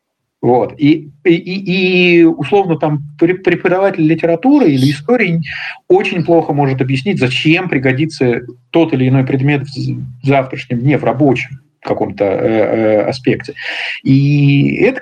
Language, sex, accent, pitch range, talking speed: Russian, male, native, 130-160 Hz, 110 wpm